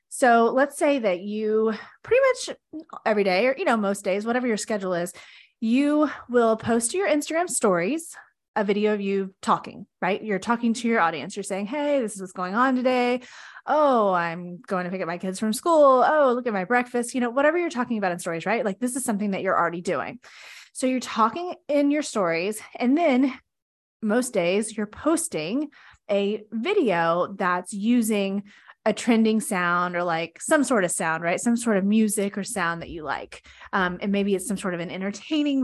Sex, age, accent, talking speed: female, 20-39, American, 205 wpm